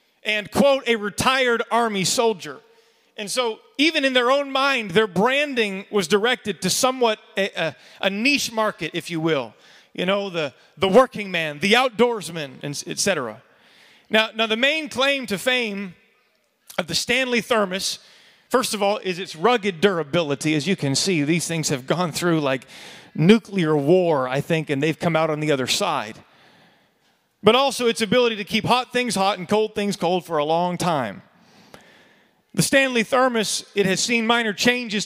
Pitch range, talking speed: 185-235 Hz, 175 wpm